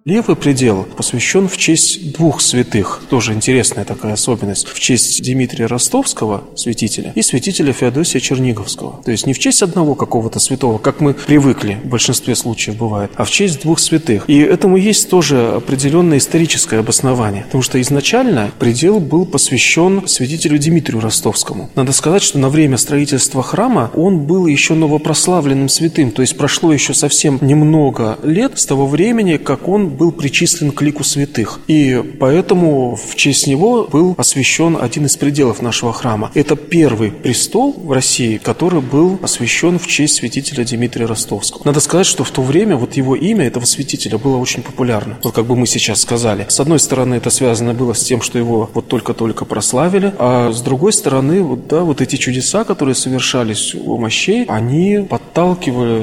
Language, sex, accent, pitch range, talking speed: Russian, male, native, 120-160 Hz, 170 wpm